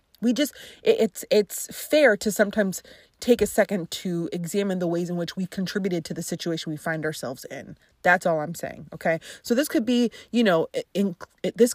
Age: 20-39